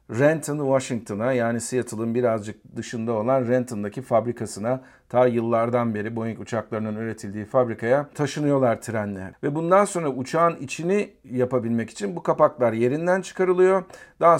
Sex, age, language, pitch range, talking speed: male, 50-69, Turkish, 120-145 Hz, 125 wpm